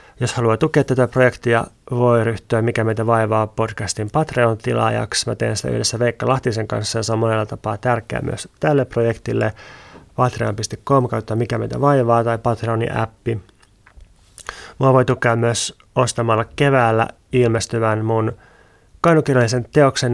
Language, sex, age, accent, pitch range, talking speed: Finnish, male, 30-49, native, 105-125 Hz, 130 wpm